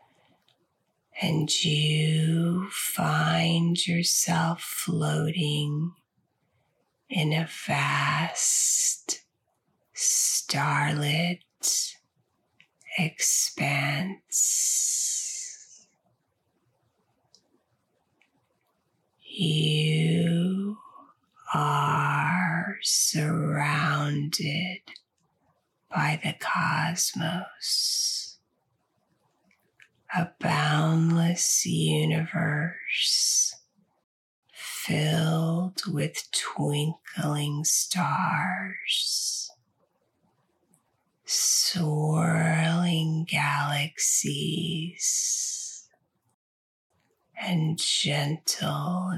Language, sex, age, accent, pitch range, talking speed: English, female, 40-59, American, 155-180 Hz, 35 wpm